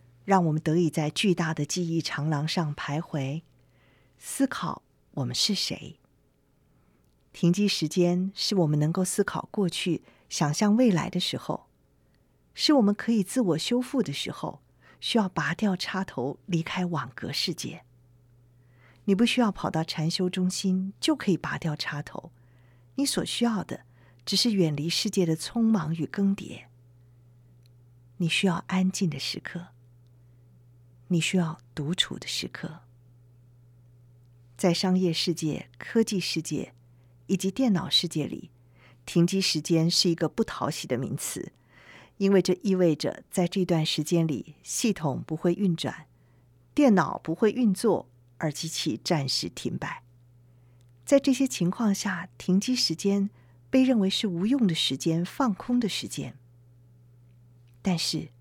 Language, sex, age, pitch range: Chinese, female, 50-69, 120-190 Hz